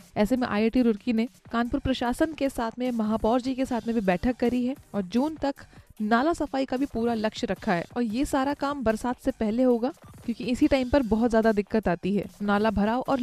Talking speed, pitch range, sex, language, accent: 225 wpm, 220-270 Hz, female, Hindi, native